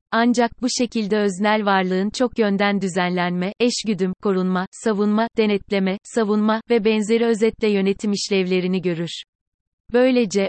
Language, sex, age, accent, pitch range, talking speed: Turkish, female, 30-49, native, 190-225 Hz, 115 wpm